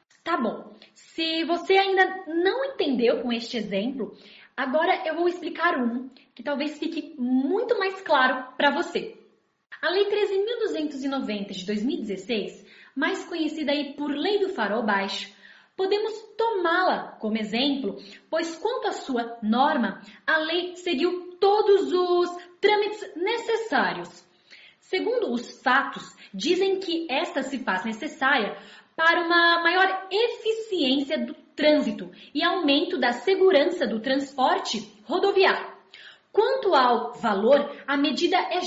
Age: 10-29